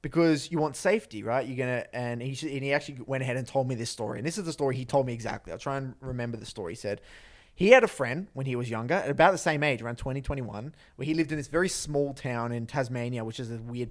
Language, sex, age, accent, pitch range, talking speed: English, male, 20-39, Australian, 120-155 Hz, 285 wpm